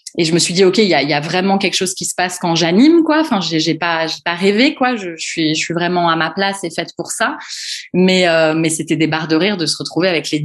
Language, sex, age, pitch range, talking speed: French, female, 20-39, 165-210 Hz, 315 wpm